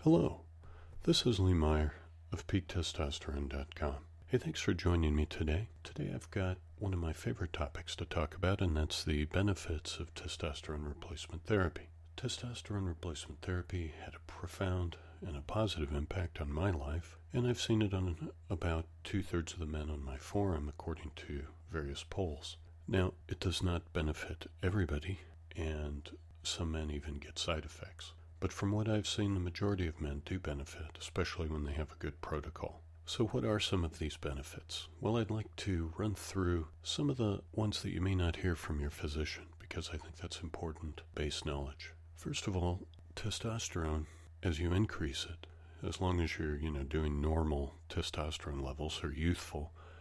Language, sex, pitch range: English, male, 80-90 Hz